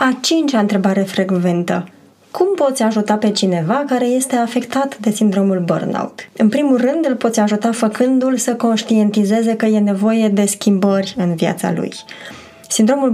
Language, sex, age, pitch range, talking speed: Romanian, female, 20-39, 200-250 Hz, 150 wpm